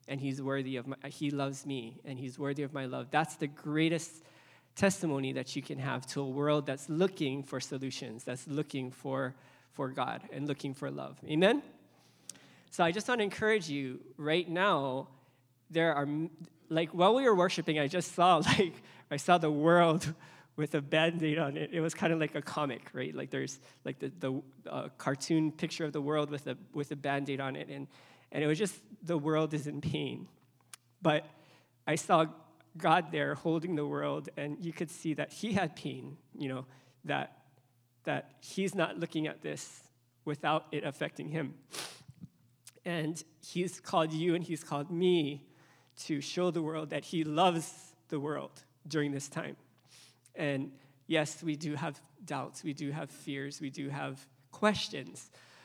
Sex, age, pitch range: male, 20-39, 135-165 Hz